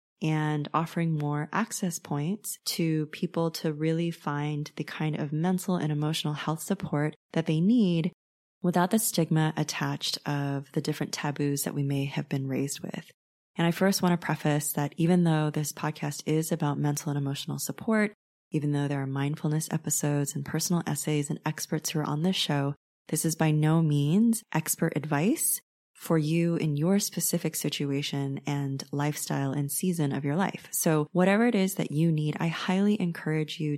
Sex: female